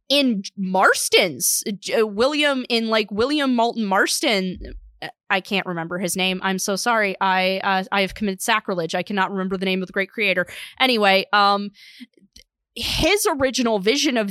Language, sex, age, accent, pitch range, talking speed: English, female, 20-39, American, 195-255 Hz, 155 wpm